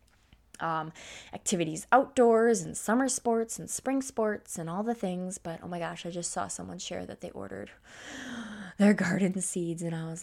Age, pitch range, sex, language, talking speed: 20-39, 170-210 Hz, female, English, 180 wpm